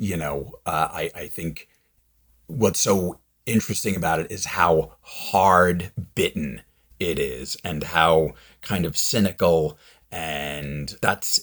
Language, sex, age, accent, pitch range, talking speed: English, male, 40-59, American, 70-90 Hz, 125 wpm